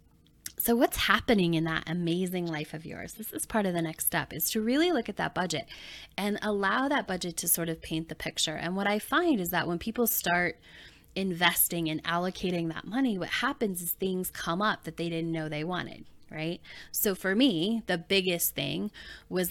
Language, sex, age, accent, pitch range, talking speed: English, female, 10-29, American, 160-195 Hz, 205 wpm